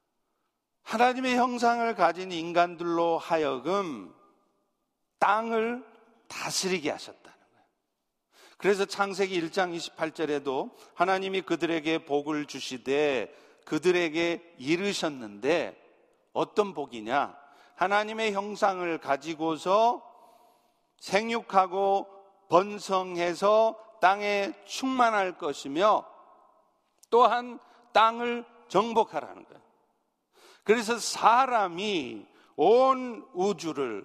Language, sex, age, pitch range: Korean, male, 50-69, 170-230 Hz